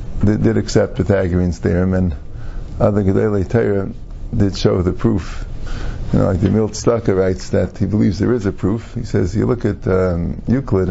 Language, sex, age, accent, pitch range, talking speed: English, male, 50-69, American, 95-130 Hz, 180 wpm